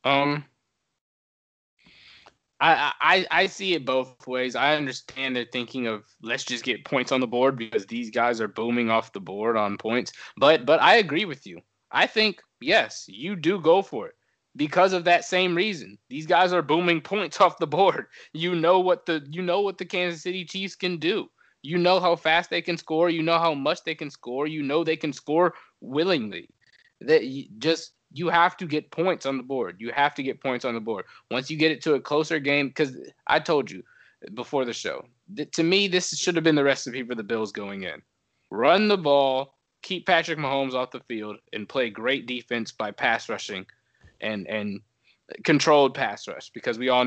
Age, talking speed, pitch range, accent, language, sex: 20-39, 205 wpm, 125-175 Hz, American, English, male